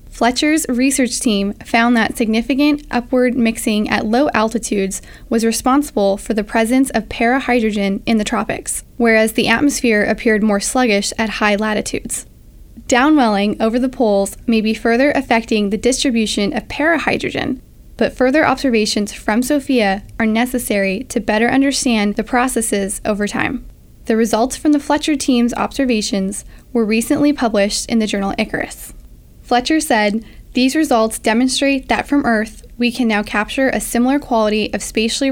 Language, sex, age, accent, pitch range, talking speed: English, female, 10-29, American, 215-255 Hz, 150 wpm